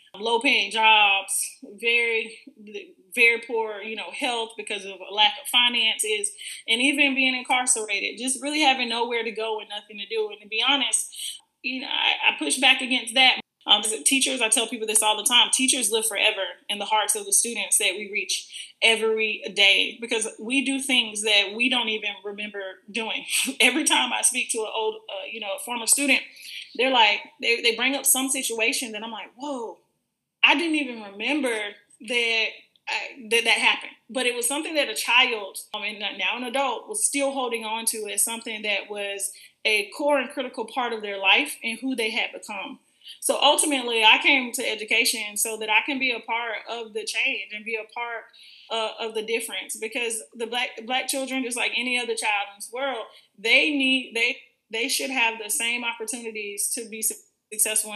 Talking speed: 195 wpm